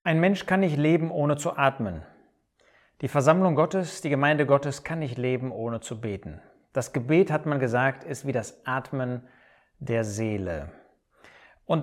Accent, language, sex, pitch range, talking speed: German, German, male, 125-170 Hz, 160 wpm